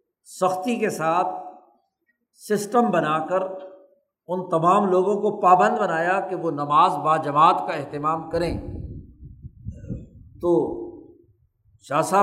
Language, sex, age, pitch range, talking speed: Urdu, male, 60-79, 150-205 Hz, 110 wpm